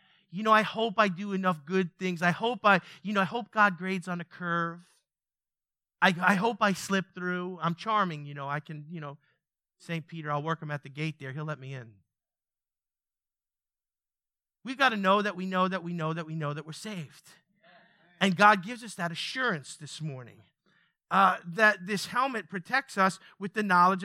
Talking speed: 200 wpm